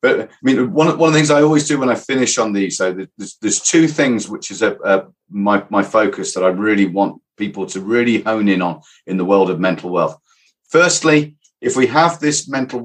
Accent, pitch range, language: British, 95-130 Hz, English